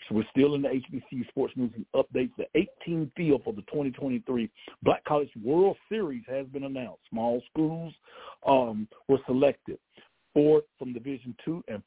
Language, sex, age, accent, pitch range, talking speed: English, male, 60-79, American, 125-155 Hz, 165 wpm